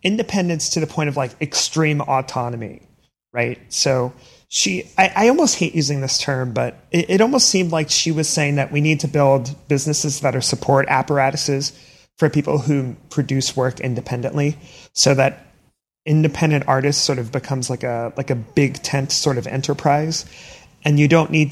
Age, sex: 30-49, male